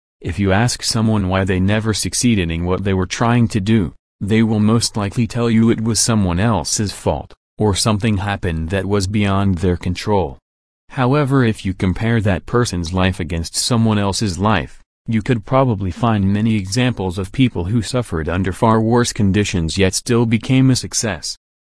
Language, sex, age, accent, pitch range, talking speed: English, male, 40-59, American, 95-115 Hz, 175 wpm